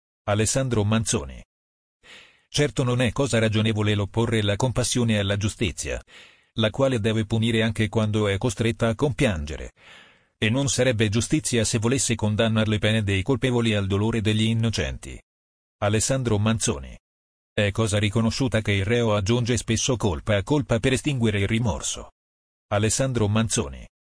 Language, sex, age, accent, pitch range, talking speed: Italian, male, 40-59, native, 100-120 Hz, 140 wpm